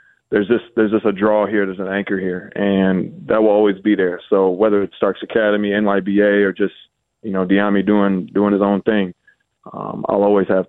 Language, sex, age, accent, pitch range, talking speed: English, male, 20-39, American, 95-105 Hz, 200 wpm